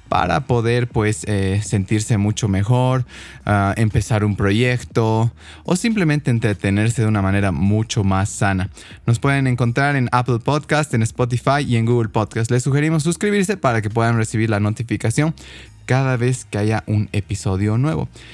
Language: Spanish